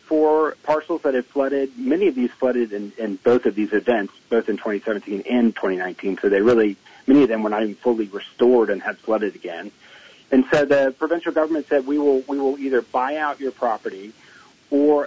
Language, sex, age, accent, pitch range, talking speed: English, male, 40-59, American, 115-150 Hz, 205 wpm